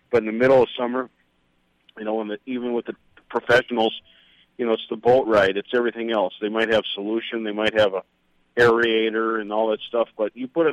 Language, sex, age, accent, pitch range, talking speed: English, male, 50-69, American, 105-125 Hz, 220 wpm